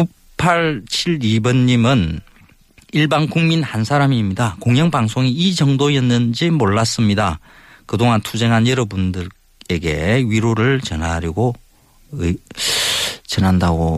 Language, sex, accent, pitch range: Korean, male, native, 90-130 Hz